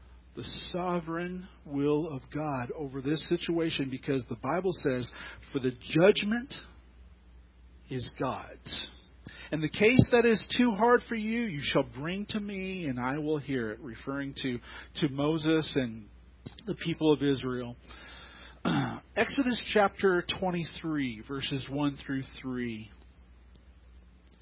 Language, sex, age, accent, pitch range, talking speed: English, male, 40-59, American, 105-175 Hz, 130 wpm